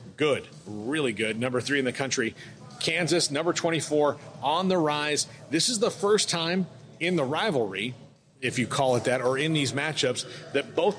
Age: 40-59